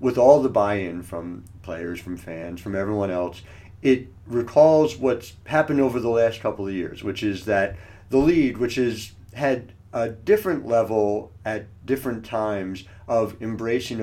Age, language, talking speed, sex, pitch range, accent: 50-69, English, 160 wpm, male, 95-120 Hz, American